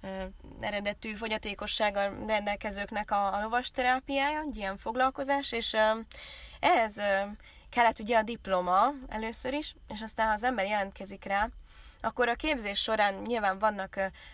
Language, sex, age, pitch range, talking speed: Hungarian, female, 20-39, 195-230 Hz, 125 wpm